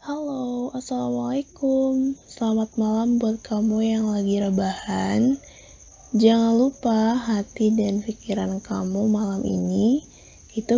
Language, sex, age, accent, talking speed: Indonesian, female, 20-39, native, 100 wpm